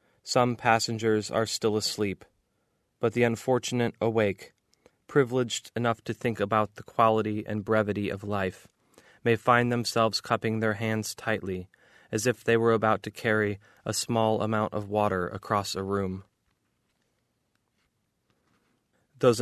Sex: male